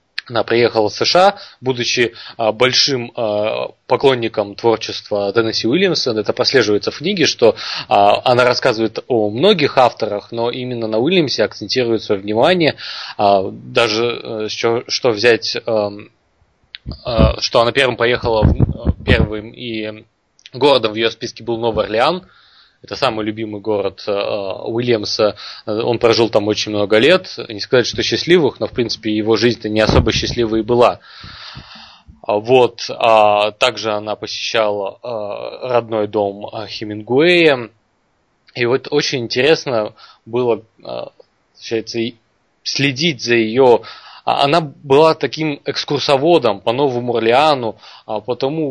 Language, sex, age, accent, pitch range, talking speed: Russian, male, 20-39, native, 110-125 Hz, 125 wpm